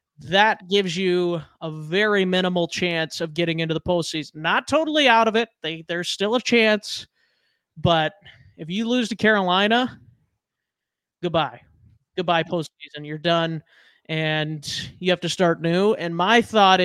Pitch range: 165-220 Hz